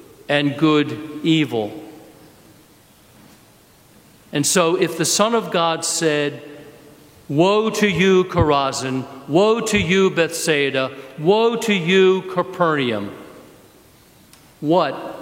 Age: 50-69